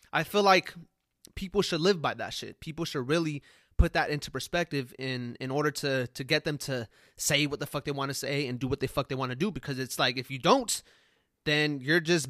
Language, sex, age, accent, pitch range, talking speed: English, male, 20-39, American, 130-155 Hz, 245 wpm